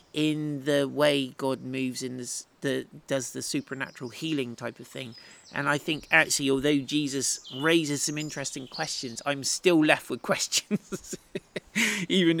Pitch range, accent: 130-170 Hz, British